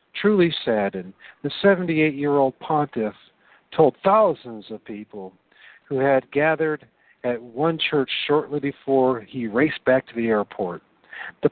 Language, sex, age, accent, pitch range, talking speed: English, male, 50-69, American, 115-150 Hz, 125 wpm